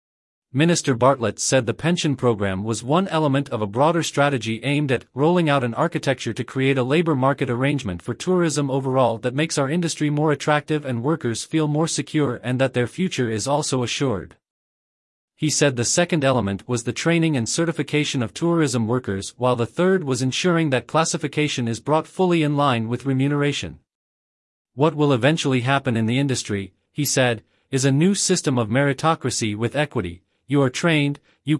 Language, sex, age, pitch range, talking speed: English, male, 40-59, 120-155 Hz, 180 wpm